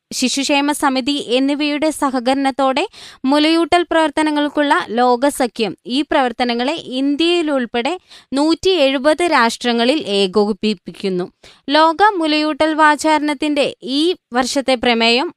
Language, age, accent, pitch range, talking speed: Malayalam, 20-39, native, 240-300 Hz, 80 wpm